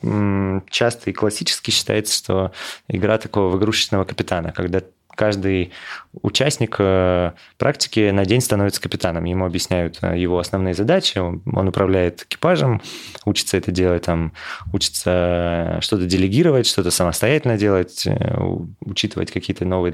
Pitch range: 90-105 Hz